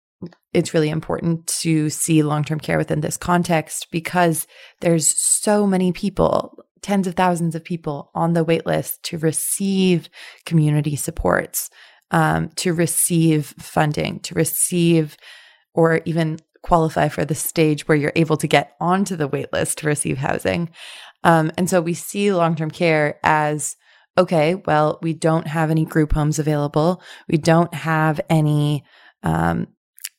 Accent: American